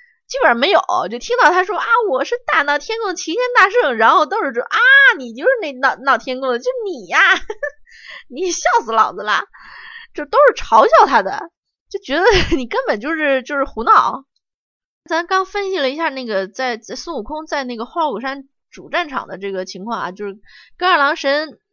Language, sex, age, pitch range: Chinese, female, 20-39, 240-360 Hz